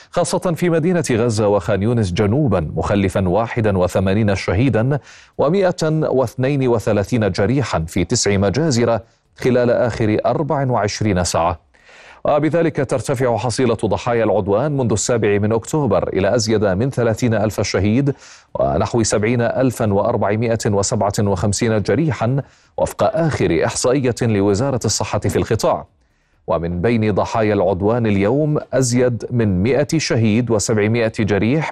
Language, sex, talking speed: Arabic, male, 115 wpm